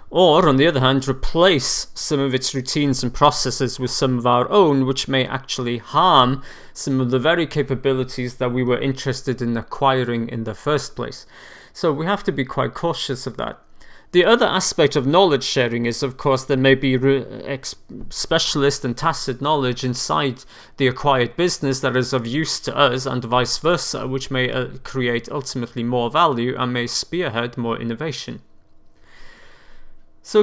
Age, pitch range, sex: 30-49, 125-155 Hz, male